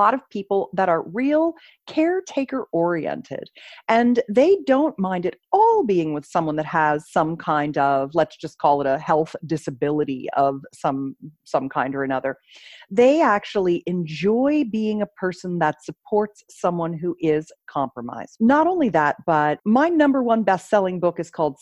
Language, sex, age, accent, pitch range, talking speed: English, female, 40-59, American, 160-240 Hz, 160 wpm